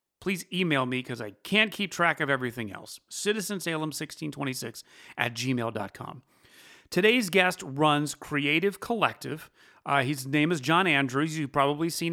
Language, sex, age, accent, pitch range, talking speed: English, male, 30-49, American, 125-175 Hz, 140 wpm